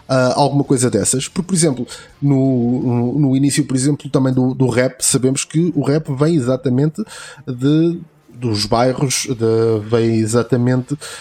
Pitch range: 120-150 Hz